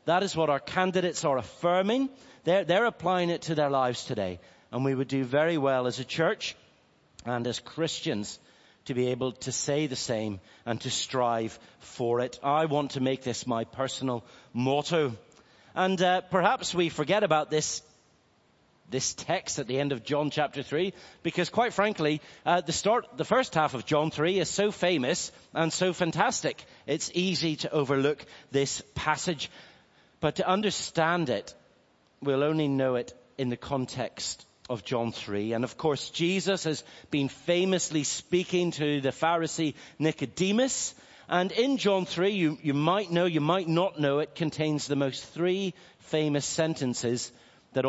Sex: male